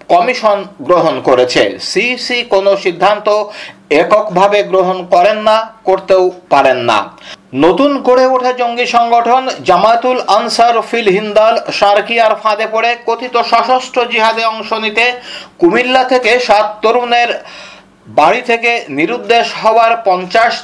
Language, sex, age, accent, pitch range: Bengali, male, 50-69, native, 205-235 Hz